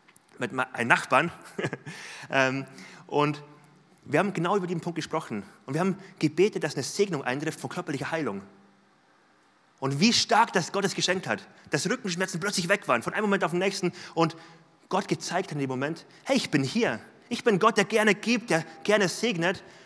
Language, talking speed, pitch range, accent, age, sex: German, 180 wpm, 145-185 Hz, German, 30-49, male